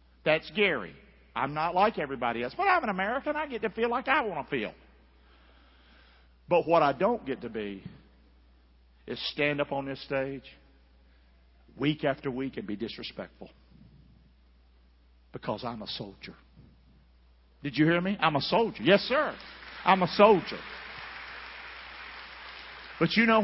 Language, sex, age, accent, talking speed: English, male, 50-69, American, 150 wpm